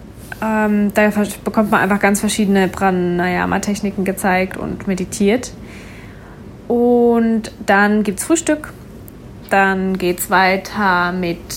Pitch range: 185-215 Hz